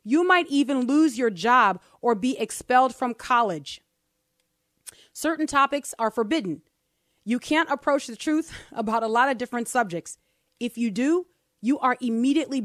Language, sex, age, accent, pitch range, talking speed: English, female, 30-49, American, 200-260 Hz, 150 wpm